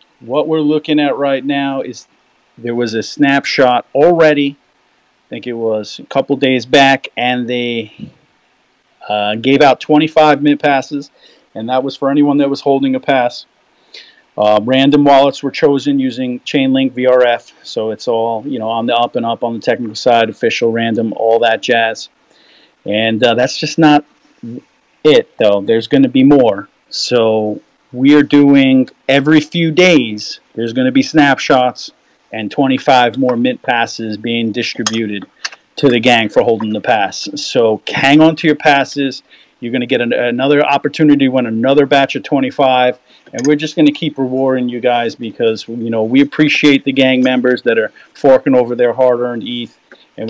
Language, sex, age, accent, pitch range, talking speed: English, male, 40-59, American, 115-140 Hz, 175 wpm